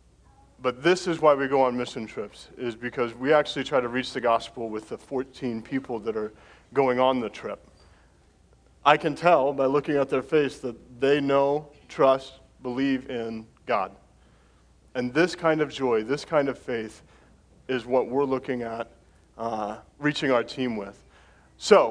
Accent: American